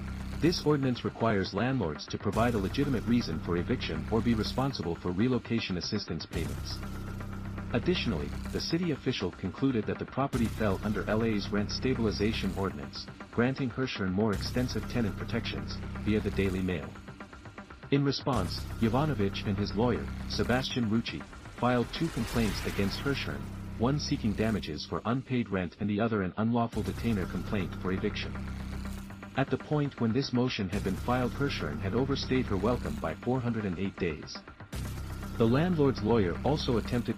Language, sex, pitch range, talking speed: English, male, 100-120 Hz, 150 wpm